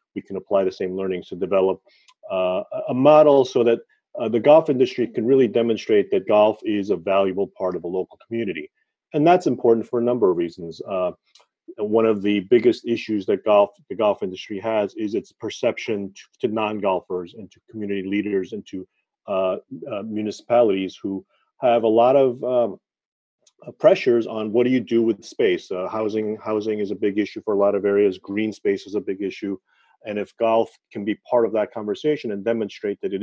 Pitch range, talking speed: 100-150 Hz, 200 wpm